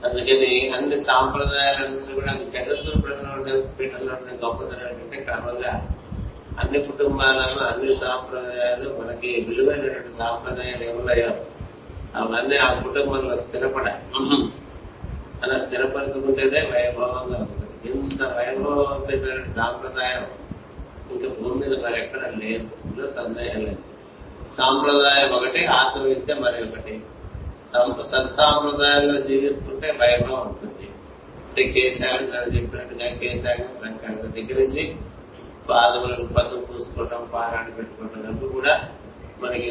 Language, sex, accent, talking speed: Telugu, male, native, 90 wpm